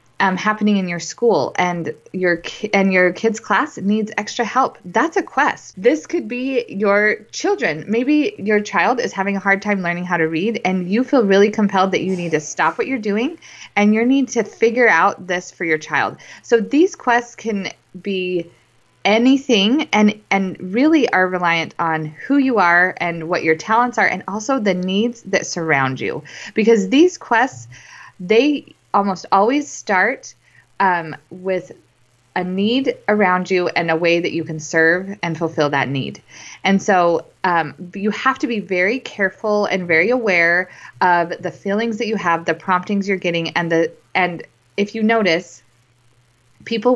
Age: 20-39